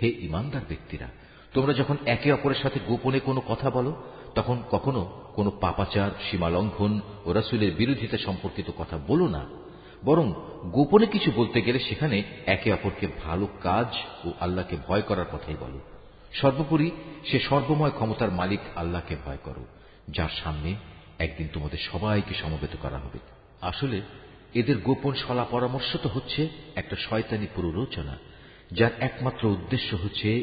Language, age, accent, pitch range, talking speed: Bengali, 50-69, native, 90-130 Hz, 135 wpm